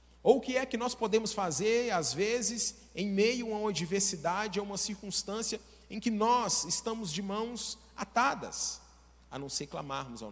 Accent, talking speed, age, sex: Brazilian, 175 wpm, 40-59, male